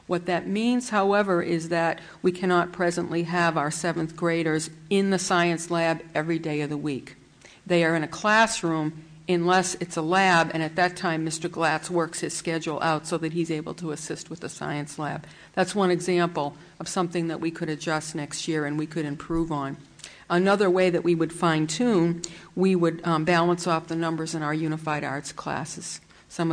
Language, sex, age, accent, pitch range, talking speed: English, female, 50-69, American, 165-185 Hz, 195 wpm